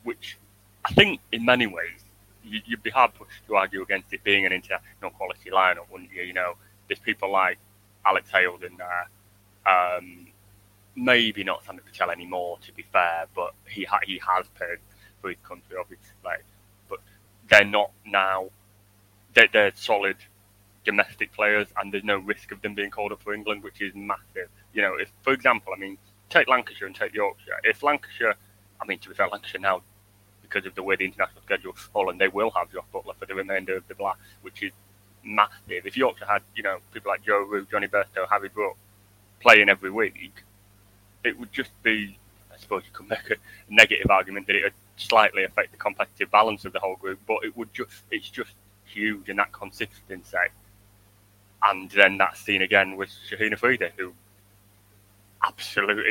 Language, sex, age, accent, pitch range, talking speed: English, male, 20-39, British, 95-105 Hz, 190 wpm